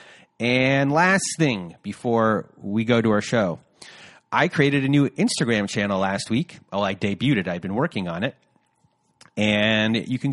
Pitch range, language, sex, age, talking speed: 105-135 Hz, English, male, 30-49, 170 wpm